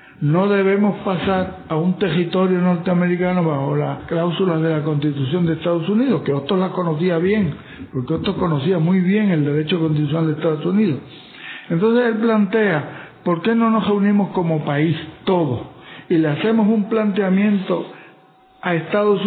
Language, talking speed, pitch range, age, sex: English, 155 wpm, 150-190 Hz, 60-79, male